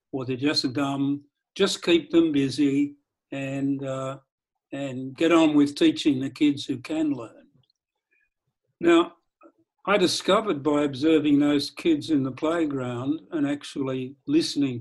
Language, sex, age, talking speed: English, male, 60-79, 130 wpm